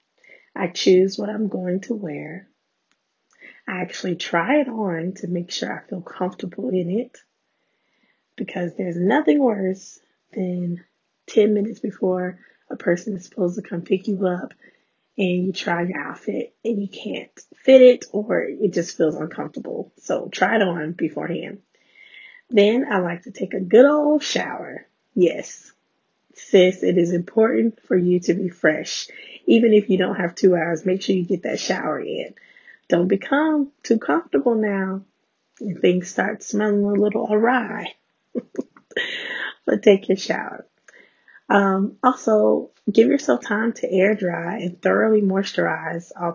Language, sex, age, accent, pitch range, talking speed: English, female, 20-39, American, 180-230 Hz, 155 wpm